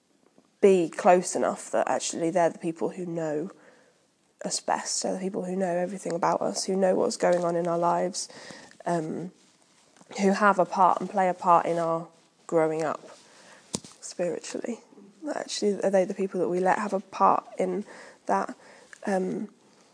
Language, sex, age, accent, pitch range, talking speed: English, female, 20-39, British, 180-205 Hz, 170 wpm